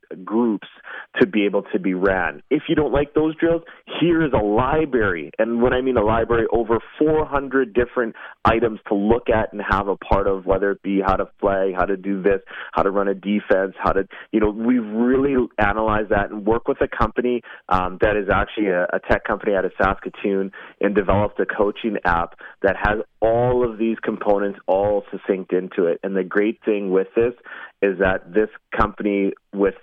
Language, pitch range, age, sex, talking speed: English, 95-115 Hz, 30-49, male, 200 wpm